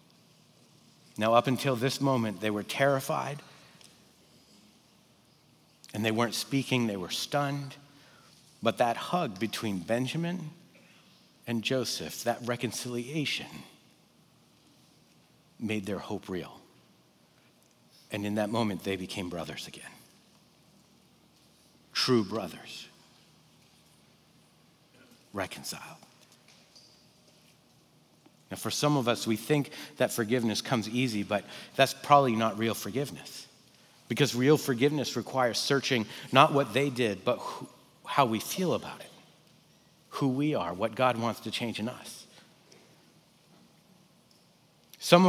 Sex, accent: male, American